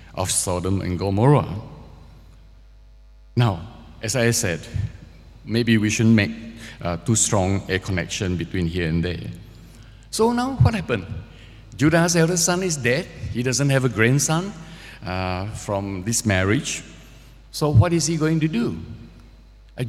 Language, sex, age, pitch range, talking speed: English, male, 50-69, 100-130 Hz, 140 wpm